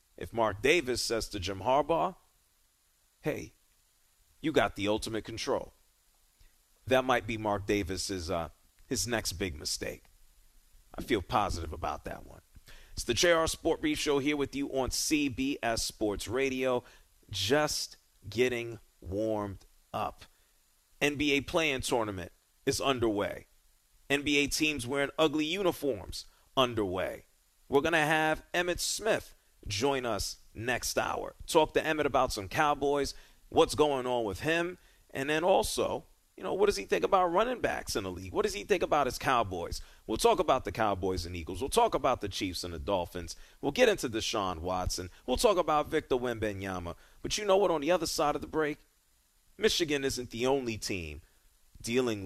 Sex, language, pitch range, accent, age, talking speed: male, English, 90-145 Hz, American, 40-59, 165 wpm